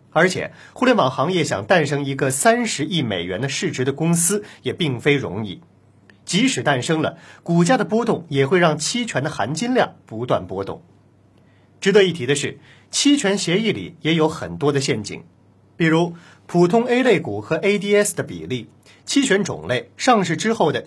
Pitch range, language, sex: 140-210 Hz, Chinese, male